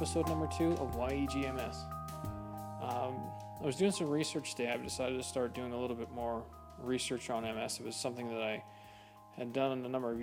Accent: American